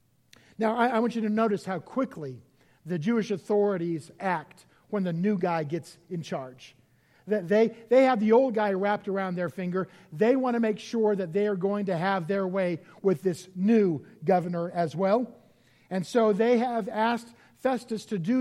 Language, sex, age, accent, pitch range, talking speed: English, male, 50-69, American, 180-235 Hz, 185 wpm